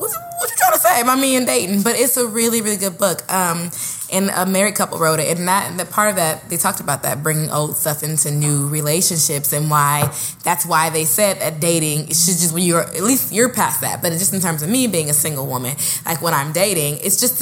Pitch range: 150-195 Hz